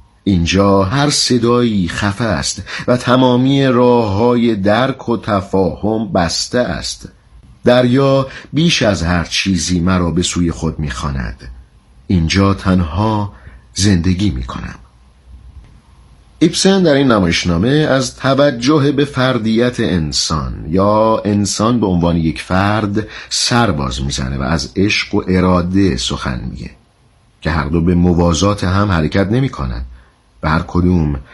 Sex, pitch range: male, 80-120 Hz